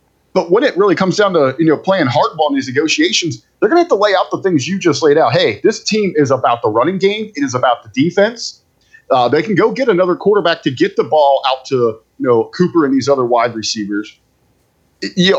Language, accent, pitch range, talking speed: English, American, 145-210 Hz, 240 wpm